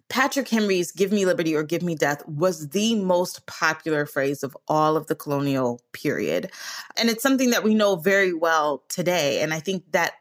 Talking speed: 195 wpm